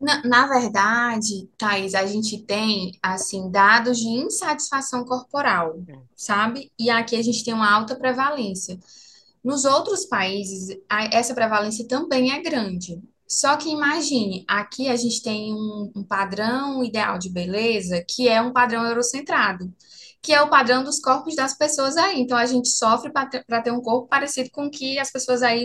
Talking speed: 165 wpm